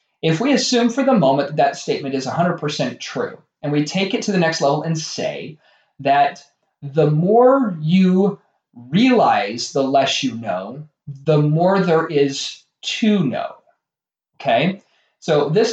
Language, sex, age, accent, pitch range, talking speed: English, male, 30-49, American, 145-190 Hz, 155 wpm